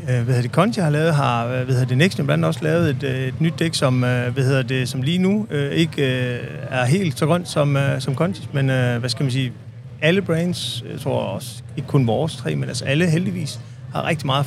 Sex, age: male, 30-49